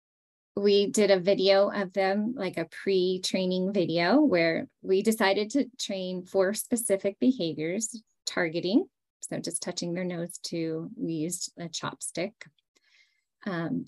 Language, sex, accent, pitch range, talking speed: English, female, American, 165-210 Hz, 130 wpm